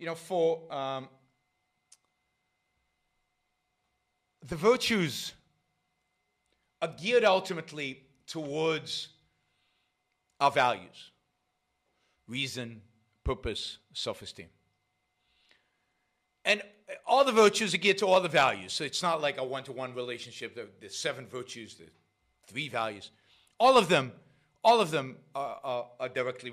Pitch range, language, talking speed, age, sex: 120-180 Hz, English, 105 wpm, 50-69, male